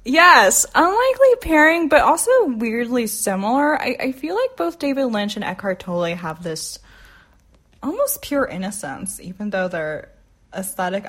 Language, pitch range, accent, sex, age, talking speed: English, 175-240 Hz, American, female, 10-29, 140 wpm